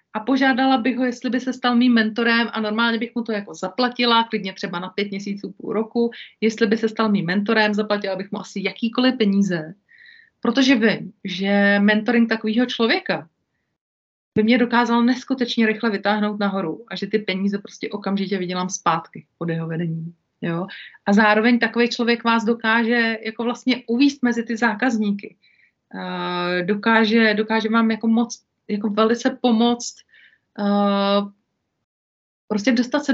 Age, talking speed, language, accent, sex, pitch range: 30-49, 155 wpm, Czech, native, female, 205-240 Hz